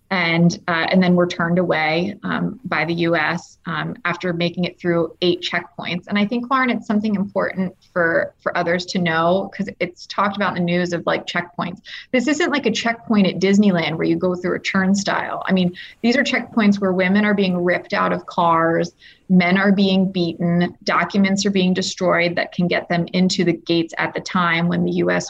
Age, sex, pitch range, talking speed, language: 20-39, female, 175-195 Hz, 205 wpm, English